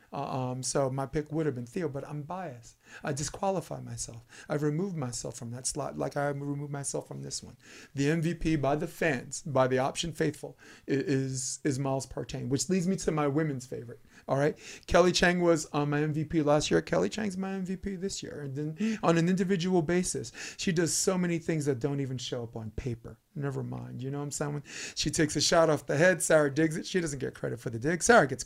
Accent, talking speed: American, 225 wpm